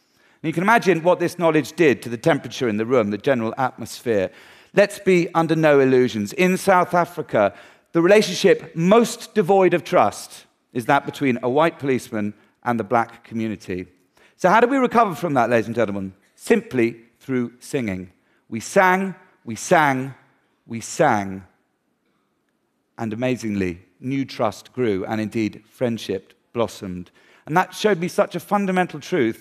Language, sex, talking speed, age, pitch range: Arabic, male, 155 wpm, 40-59, 115-175 Hz